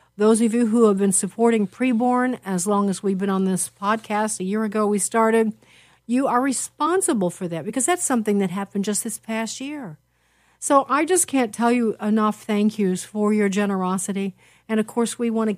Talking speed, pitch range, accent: 205 wpm, 195-235 Hz, American